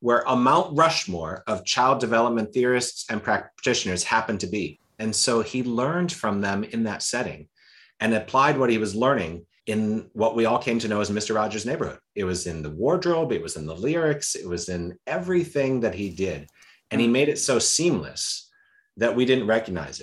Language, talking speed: English, 200 wpm